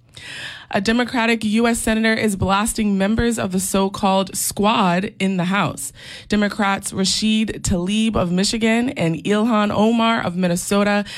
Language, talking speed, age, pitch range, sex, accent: English, 130 wpm, 20-39, 170-215 Hz, female, American